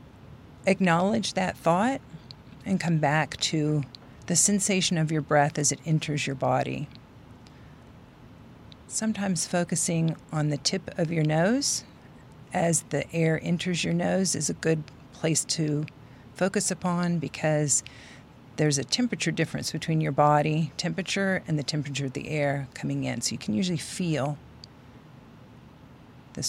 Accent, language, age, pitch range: American, English, 40-59, 140-175 Hz